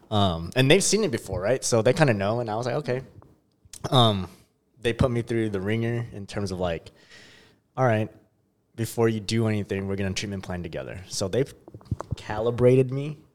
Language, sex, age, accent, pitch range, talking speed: English, male, 20-39, American, 90-115 Hz, 200 wpm